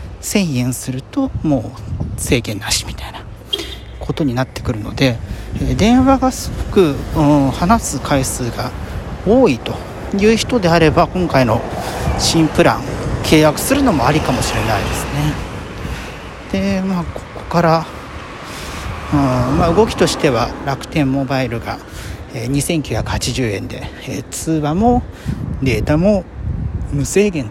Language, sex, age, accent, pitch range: Japanese, male, 40-59, native, 115-170 Hz